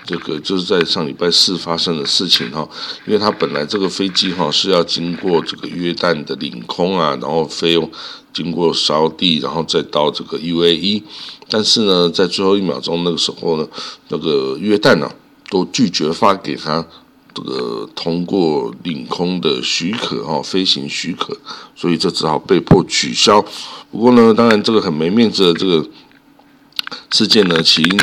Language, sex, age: Chinese, male, 60-79